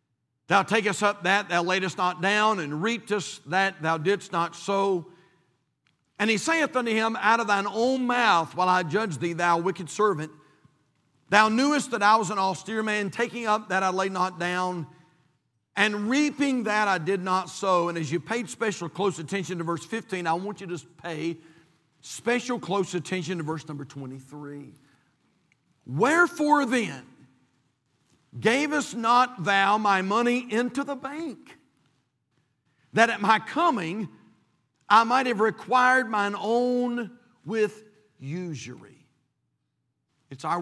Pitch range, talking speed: 155-220 Hz, 150 wpm